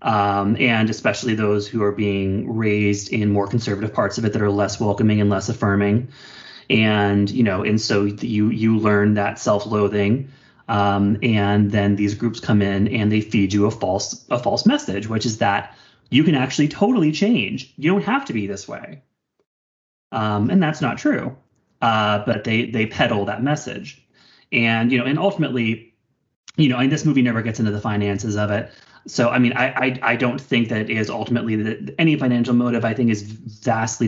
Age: 30-49